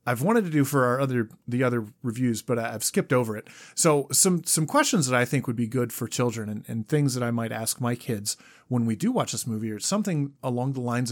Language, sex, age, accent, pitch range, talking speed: English, male, 30-49, American, 115-150 Hz, 255 wpm